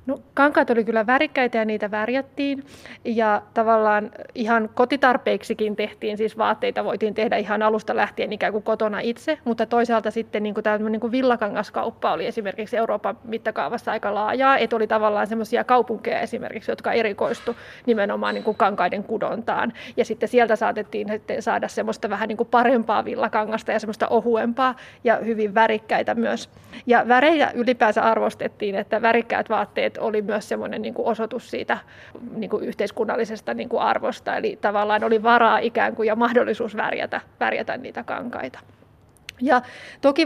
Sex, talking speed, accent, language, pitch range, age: female, 140 wpm, native, Finnish, 220-250 Hz, 20-39